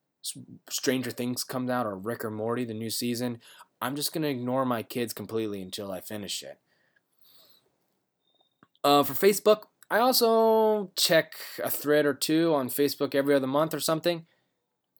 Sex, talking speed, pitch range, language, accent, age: male, 165 wpm, 120-160 Hz, English, American, 20-39